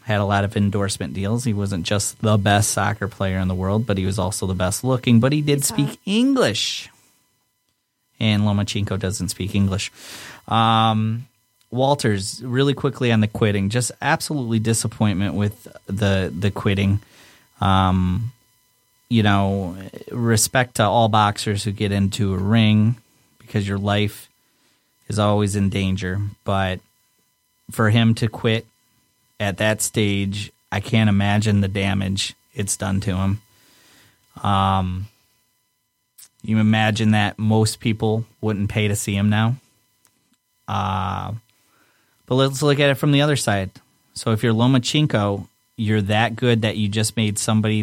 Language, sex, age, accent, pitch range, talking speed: English, male, 30-49, American, 100-115 Hz, 145 wpm